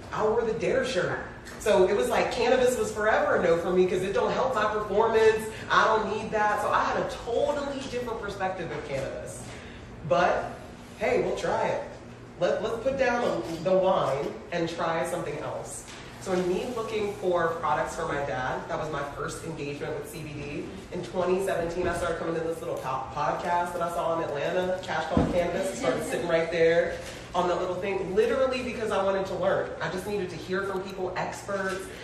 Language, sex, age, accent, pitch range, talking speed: English, female, 30-49, American, 155-195 Hz, 195 wpm